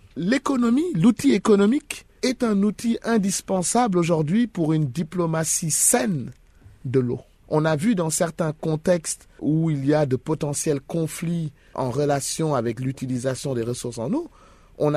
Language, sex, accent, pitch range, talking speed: French, male, French, 145-200 Hz, 145 wpm